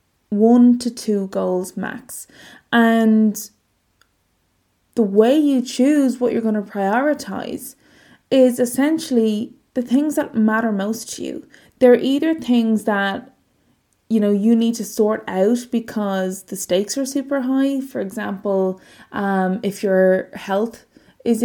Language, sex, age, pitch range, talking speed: English, female, 20-39, 205-255 Hz, 135 wpm